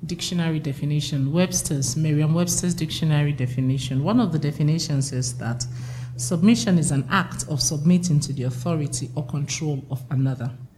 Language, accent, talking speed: English, Nigerian, 140 wpm